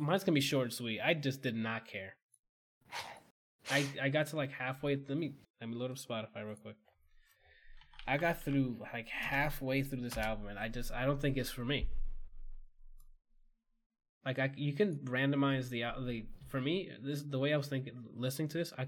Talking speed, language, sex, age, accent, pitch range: 195 wpm, English, male, 20-39, American, 110-140 Hz